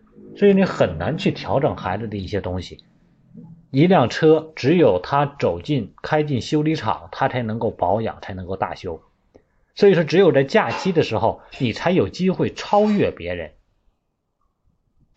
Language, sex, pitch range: Chinese, male, 100-150 Hz